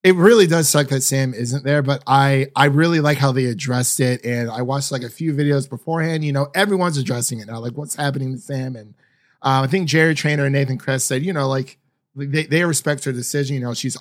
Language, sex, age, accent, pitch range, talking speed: English, male, 30-49, American, 120-140 Hz, 245 wpm